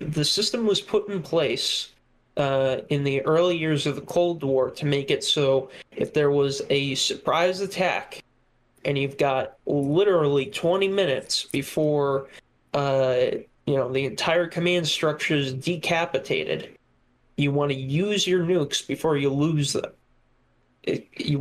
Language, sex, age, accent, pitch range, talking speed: English, male, 20-39, American, 135-155 Hz, 150 wpm